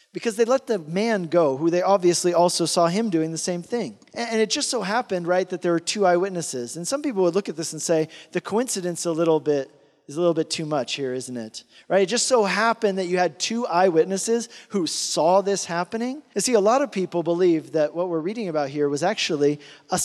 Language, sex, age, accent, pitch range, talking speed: English, male, 40-59, American, 160-210 Hz, 240 wpm